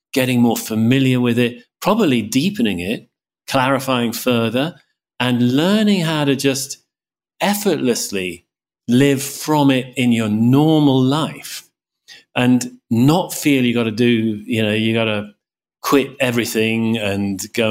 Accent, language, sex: British, English, male